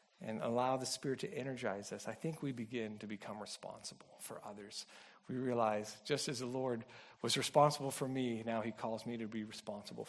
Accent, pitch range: American, 120-170 Hz